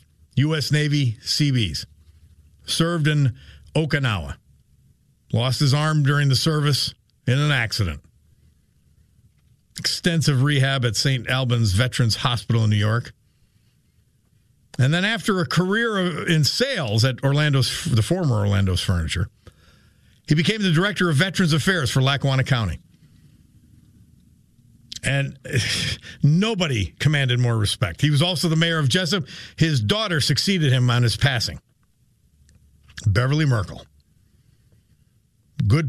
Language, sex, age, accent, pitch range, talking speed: English, male, 50-69, American, 115-155 Hz, 115 wpm